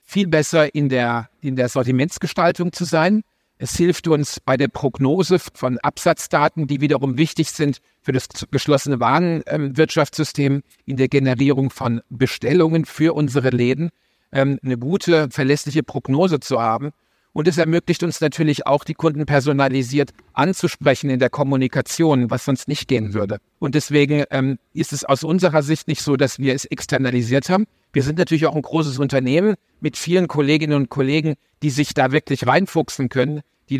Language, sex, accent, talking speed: German, male, German, 165 wpm